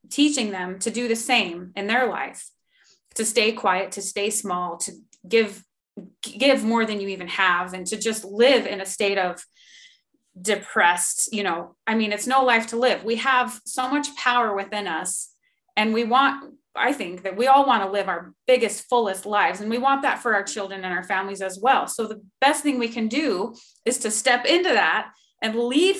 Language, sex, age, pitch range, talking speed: English, female, 30-49, 195-245 Hz, 205 wpm